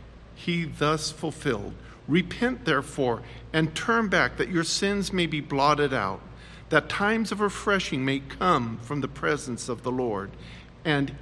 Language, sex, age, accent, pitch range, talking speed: English, male, 50-69, American, 130-180 Hz, 150 wpm